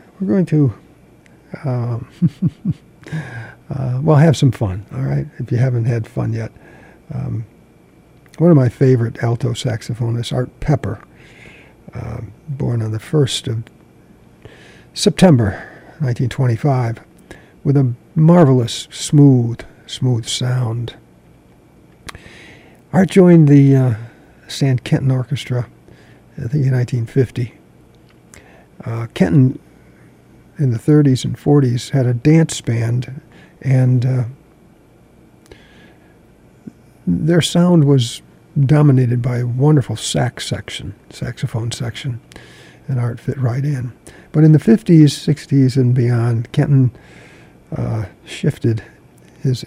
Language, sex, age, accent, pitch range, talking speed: English, male, 60-79, American, 120-145 Hz, 110 wpm